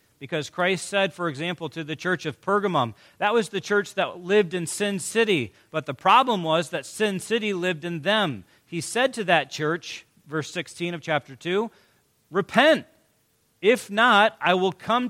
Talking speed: 180 wpm